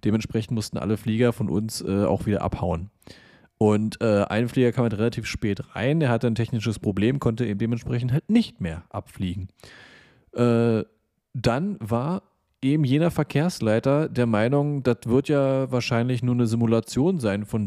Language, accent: German, German